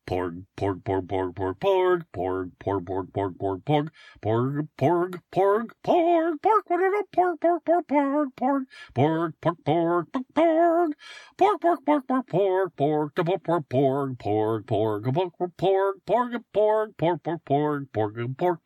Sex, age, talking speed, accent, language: male, 50-69, 120 wpm, American, English